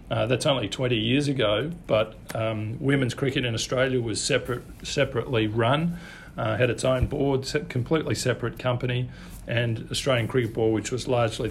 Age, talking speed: 40-59, 165 wpm